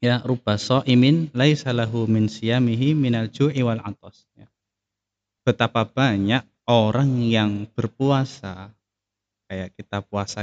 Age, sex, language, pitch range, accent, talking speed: 20-39, male, Indonesian, 100-130 Hz, native, 110 wpm